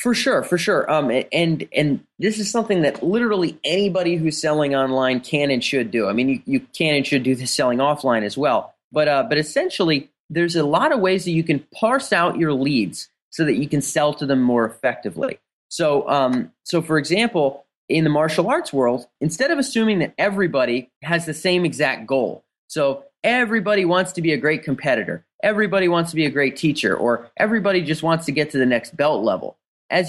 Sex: male